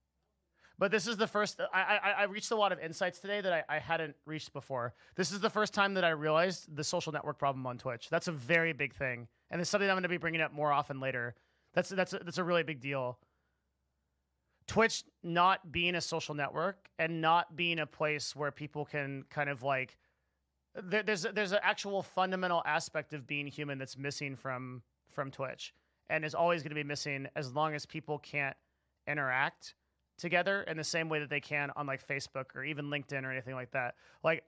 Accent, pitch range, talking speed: American, 135-180 Hz, 215 wpm